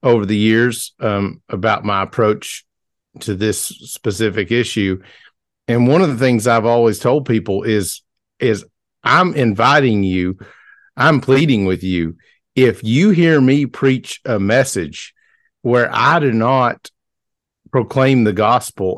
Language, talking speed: English, 135 wpm